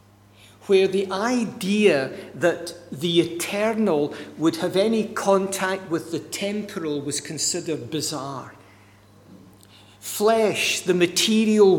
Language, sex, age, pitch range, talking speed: English, male, 60-79, 145-205 Hz, 95 wpm